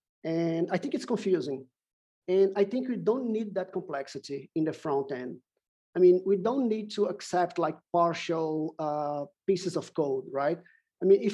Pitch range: 155-195 Hz